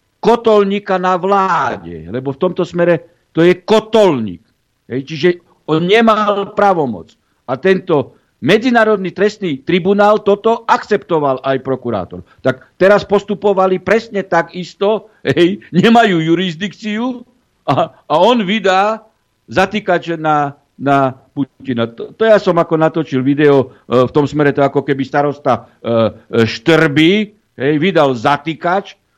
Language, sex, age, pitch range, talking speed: Slovak, male, 60-79, 135-185 Hz, 115 wpm